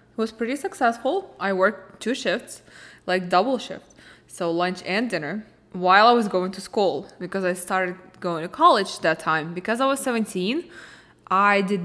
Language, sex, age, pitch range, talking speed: English, female, 20-39, 170-220 Hz, 175 wpm